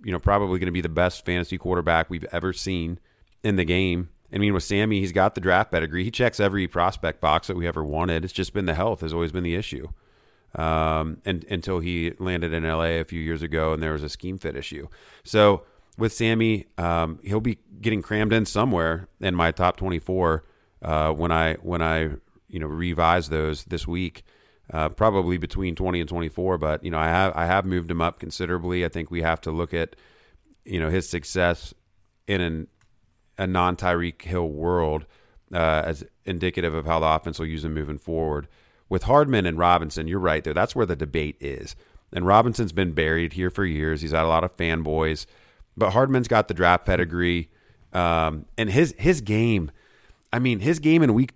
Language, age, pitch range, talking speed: English, 30-49, 80-100 Hz, 205 wpm